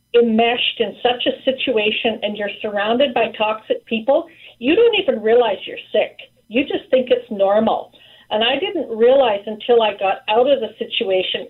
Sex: female